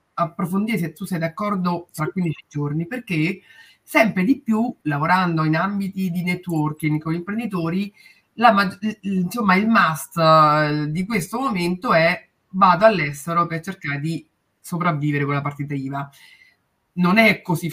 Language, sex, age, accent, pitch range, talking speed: Italian, female, 30-49, native, 155-190 Hz, 140 wpm